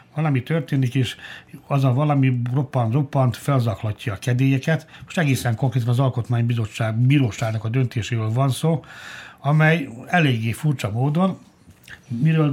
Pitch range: 120-140 Hz